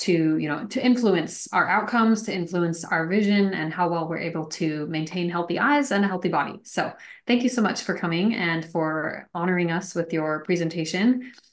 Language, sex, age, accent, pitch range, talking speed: English, female, 30-49, American, 165-200 Hz, 200 wpm